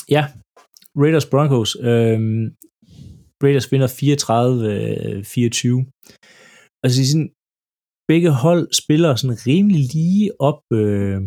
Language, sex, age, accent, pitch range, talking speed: Danish, male, 30-49, native, 115-150 Hz, 95 wpm